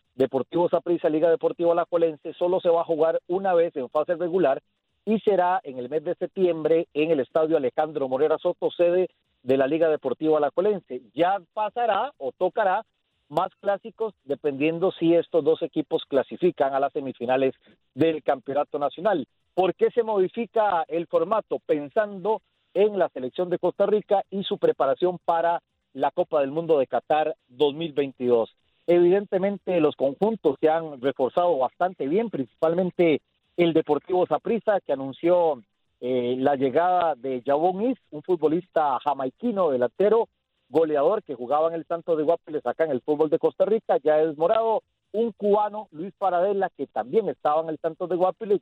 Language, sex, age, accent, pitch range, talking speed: Spanish, male, 40-59, Mexican, 150-190 Hz, 165 wpm